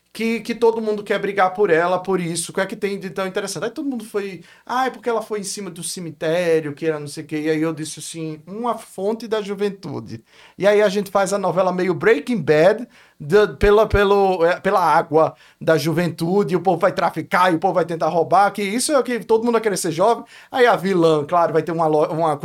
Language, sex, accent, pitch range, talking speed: Portuguese, male, Brazilian, 165-225 Hz, 240 wpm